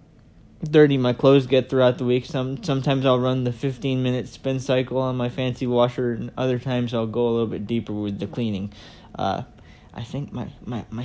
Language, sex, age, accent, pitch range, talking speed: English, male, 20-39, American, 120-155 Hz, 200 wpm